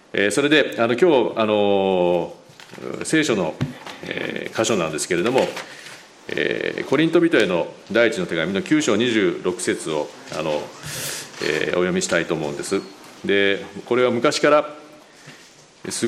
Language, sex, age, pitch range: Japanese, male, 40-59, 100-125 Hz